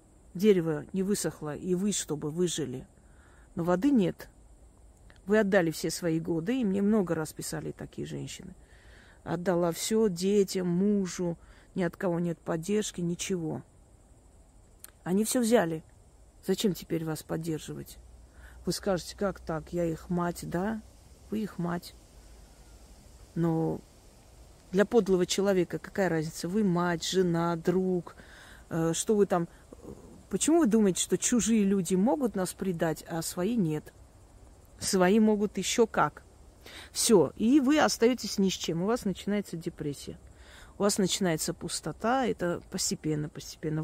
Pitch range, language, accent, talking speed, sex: 150-200 Hz, Russian, native, 135 wpm, female